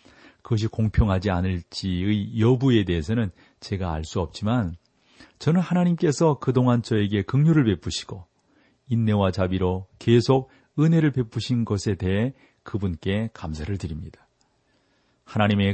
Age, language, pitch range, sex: 40-59, Korean, 100-125 Hz, male